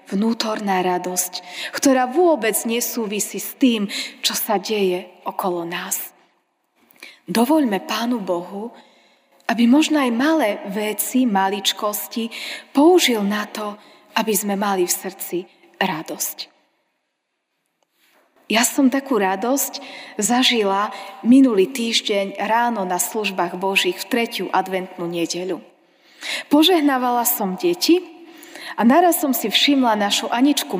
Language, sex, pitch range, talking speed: Slovak, female, 195-270 Hz, 105 wpm